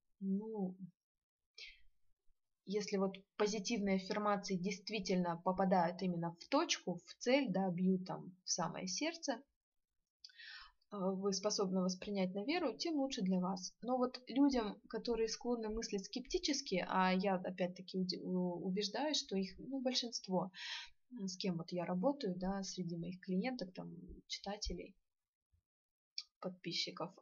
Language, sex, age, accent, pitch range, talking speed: Russian, female, 20-39, native, 185-225 Hz, 120 wpm